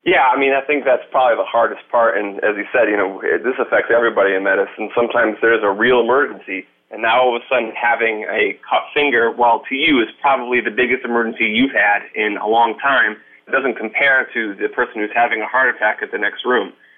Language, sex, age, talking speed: English, male, 30-49, 230 wpm